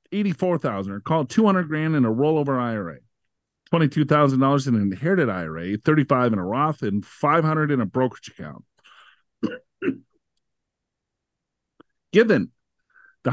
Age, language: 40-59, English